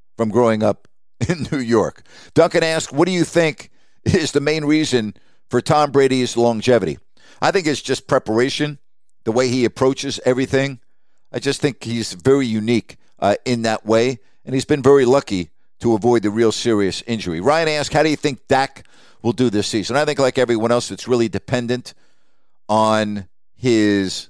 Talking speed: 180 wpm